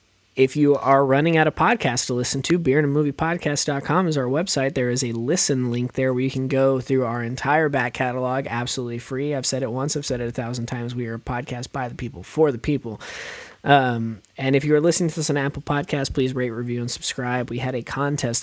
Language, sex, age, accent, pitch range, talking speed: English, male, 20-39, American, 115-140 Hz, 240 wpm